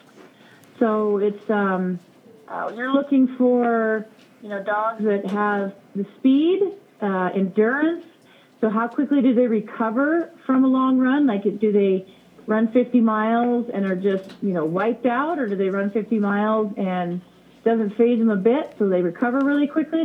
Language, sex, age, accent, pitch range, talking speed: English, female, 40-59, American, 195-245 Hz, 170 wpm